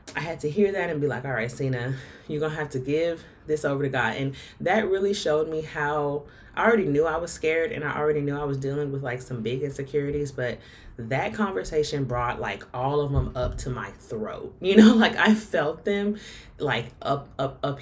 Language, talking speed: English, 225 wpm